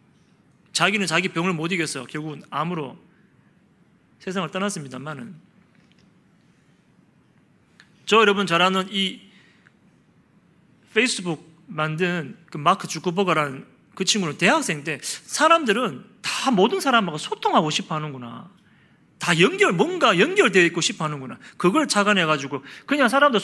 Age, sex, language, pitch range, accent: 30-49, male, Korean, 165-210 Hz, native